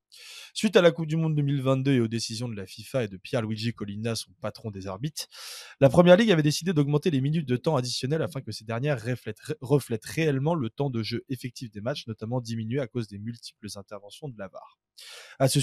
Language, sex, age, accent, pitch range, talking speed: French, male, 20-39, French, 115-155 Hz, 225 wpm